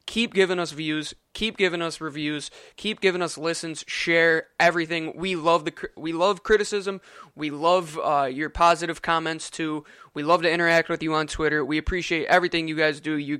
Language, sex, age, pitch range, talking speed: English, male, 20-39, 155-185 Hz, 190 wpm